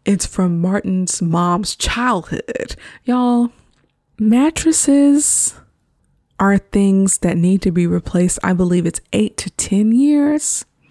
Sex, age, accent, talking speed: female, 20-39, American, 115 wpm